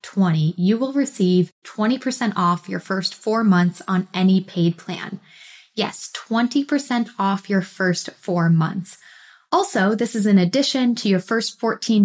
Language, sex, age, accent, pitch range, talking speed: English, female, 20-39, American, 180-225 Hz, 150 wpm